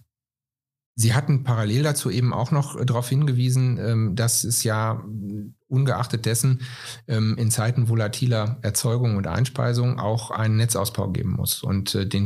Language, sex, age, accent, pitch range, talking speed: German, male, 40-59, German, 110-125 Hz, 130 wpm